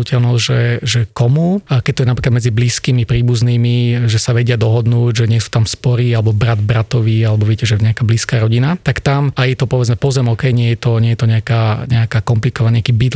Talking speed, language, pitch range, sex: 215 wpm, Slovak, 115-130 Hz, male